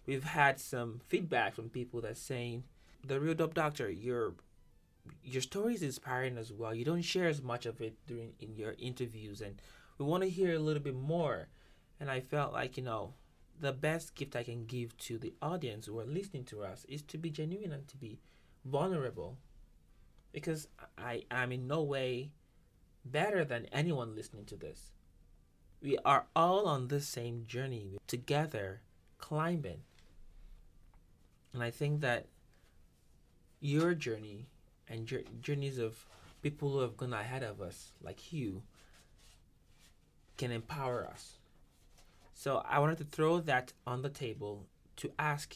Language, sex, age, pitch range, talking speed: English, male, 20-39, 105-145 Hz, 160 wpm